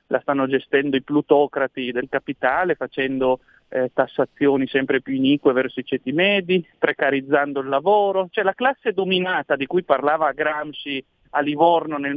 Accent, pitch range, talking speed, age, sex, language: native, 140-190 Hz, 155 wpm, 40-59, male, Italian